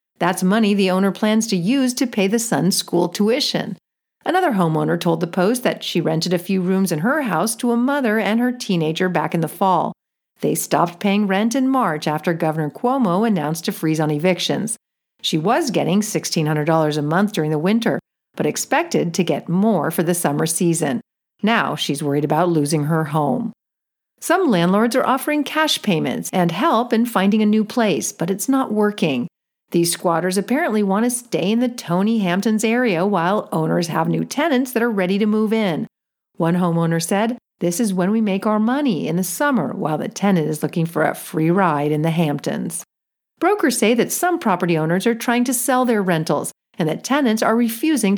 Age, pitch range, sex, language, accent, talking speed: 50-69, 170-235 Hz, female, English, American, 195 wpm